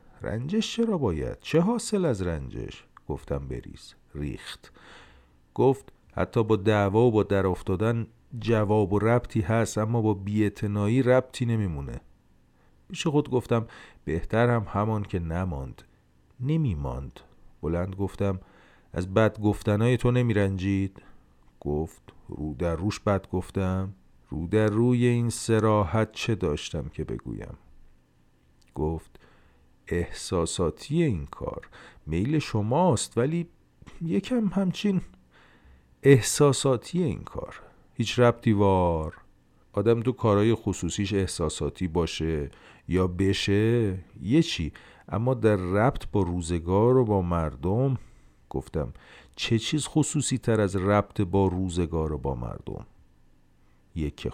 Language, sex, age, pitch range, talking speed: Persian, male, 50-69, 80-120 Hz, 115 wpm